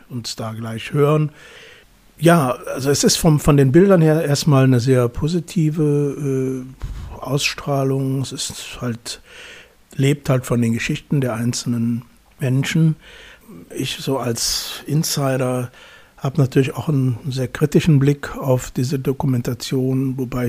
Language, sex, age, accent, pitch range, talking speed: German, male, 60-79, German, 125-140 Hz, 130 wpm